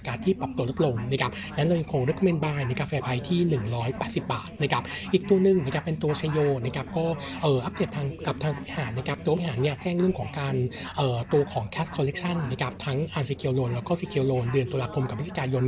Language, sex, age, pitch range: Thai, male, 60-79, 130-160 Hz